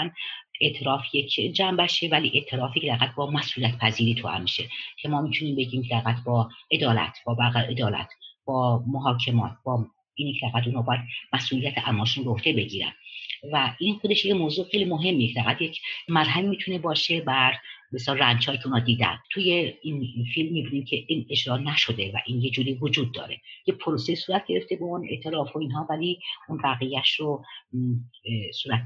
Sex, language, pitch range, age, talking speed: female, Persian, 120-165 Hz, 50-69, 160 wpm